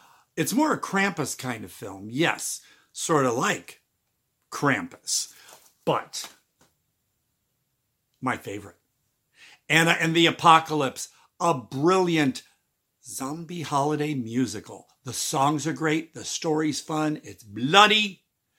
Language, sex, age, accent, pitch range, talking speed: English, male, 60-79, American, 115-155 Hz, 105 wpm